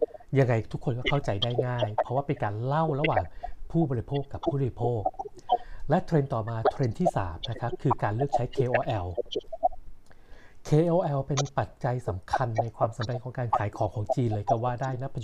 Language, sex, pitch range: Thai, male, 120-165 Hz